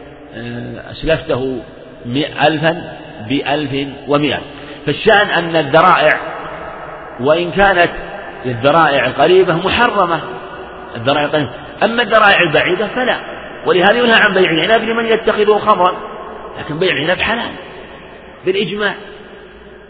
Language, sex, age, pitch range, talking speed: Arabic, male, 50-69, 135-180 Hz, 85 wpm